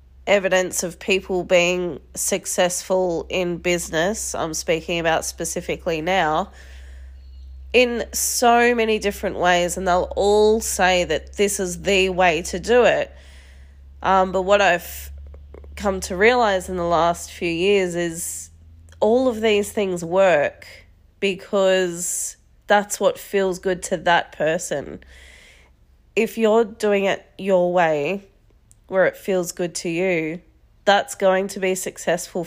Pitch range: 170-195 Hz